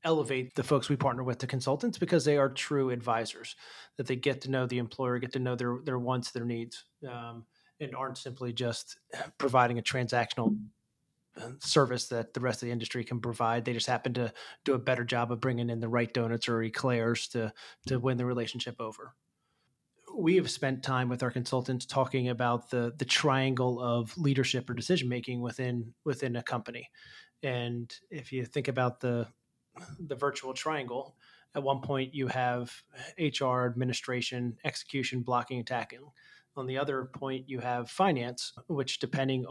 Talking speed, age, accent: 175 wpm, 30-49, American